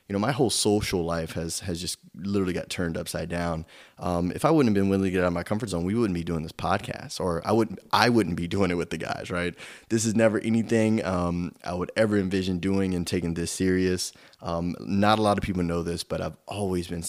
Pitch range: 85-100 Hz